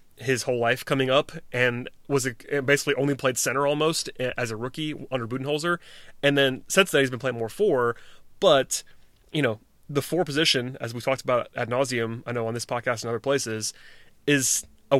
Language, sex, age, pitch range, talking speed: English, male, 30-49, 115-135 Hz, 195 wpm